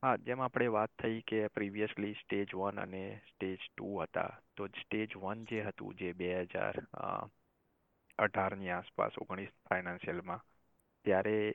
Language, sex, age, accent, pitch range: Gujarati, male, 20-39, native, 90-100 Hz